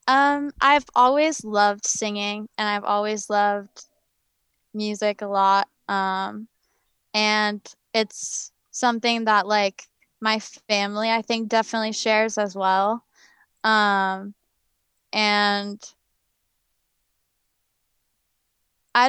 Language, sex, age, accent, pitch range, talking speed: English, female, 20-39, American, 200-230 Hz, 90 wpm